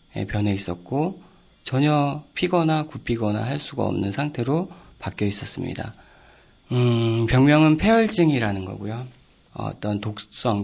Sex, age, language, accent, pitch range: male, 40-59, Korean, native, 105-140 Hz